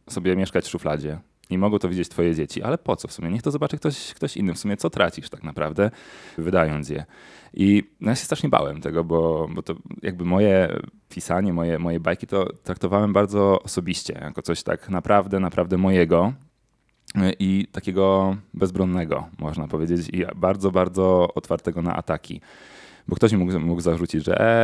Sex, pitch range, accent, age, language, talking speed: male, 85-100 Hz, native, 20-39, Polish, 180 wpm